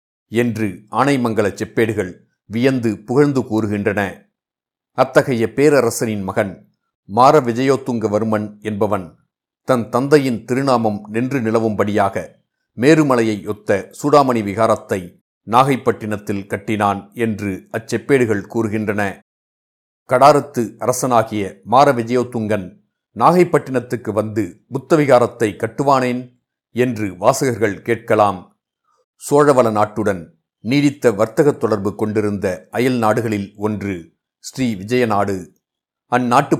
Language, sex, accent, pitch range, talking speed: Tamil, male, native, 105-125 Hz, 75 wpm